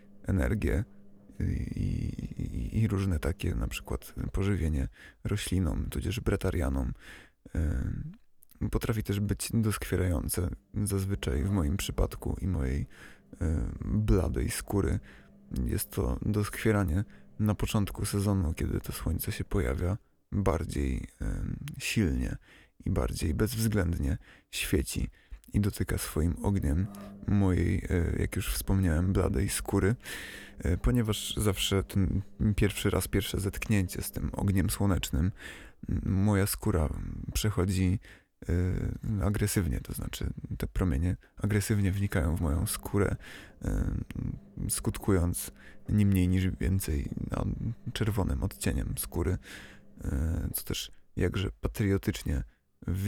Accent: native